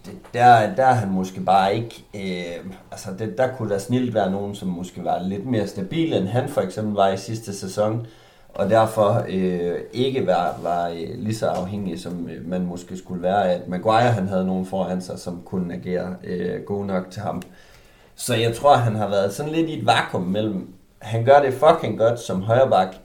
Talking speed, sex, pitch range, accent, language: 205 wpm, male, 95-115 Hz, native, Danish